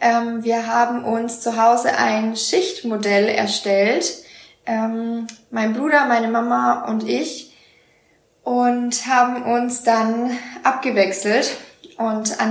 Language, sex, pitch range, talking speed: German, female, 220-245 Hz, 100 wpm